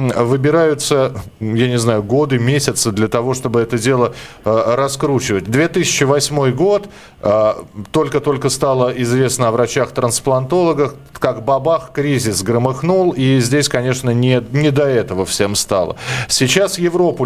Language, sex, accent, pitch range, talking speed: Russian, male, native, 120-150 Hz, 125 wpm